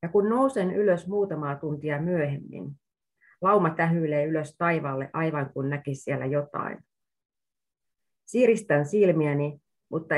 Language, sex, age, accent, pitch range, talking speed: Finnish, female, 30-49, native, 140-170 Hz, 110 wpm